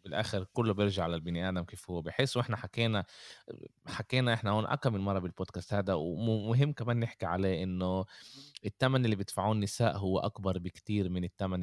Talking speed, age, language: 165 wpm, 20-39, Arabic